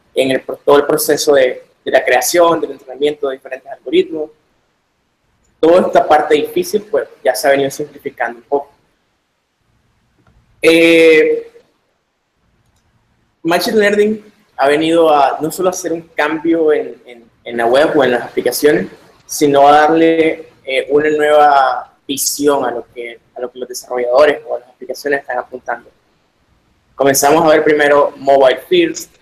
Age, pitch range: 20-39, 135-185 Hz